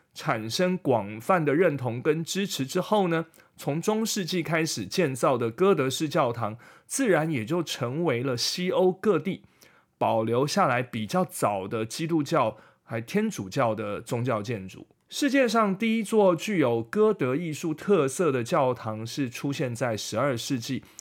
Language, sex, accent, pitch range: Chinese, male, native, 120-180 Hz